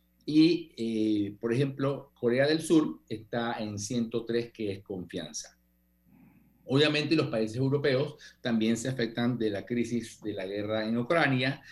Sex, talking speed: male, 145 wpm